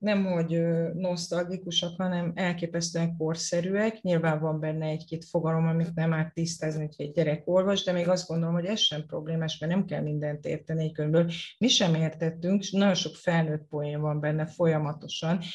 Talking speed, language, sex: 175 wpm, Hungarian, female